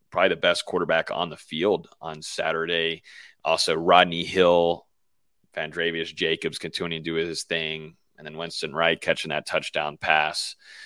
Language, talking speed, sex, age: English, 150 wpm, male, 30-49